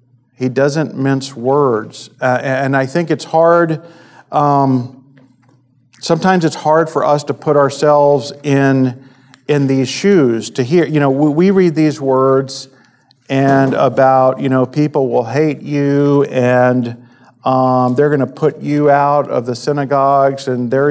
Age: 50-69